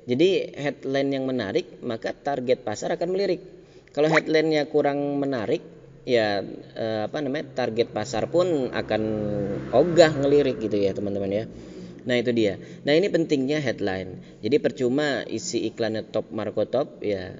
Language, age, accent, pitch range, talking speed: Indonesian, 20-39, native, 110-145 Hz, 145 wpm